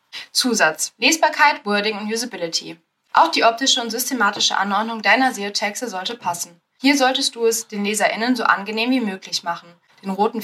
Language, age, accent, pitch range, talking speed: German, 10-29, German, 190-240 Hz, 160 wpm